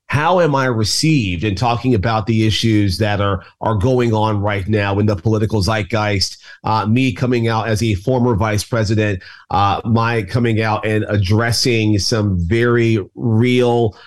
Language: English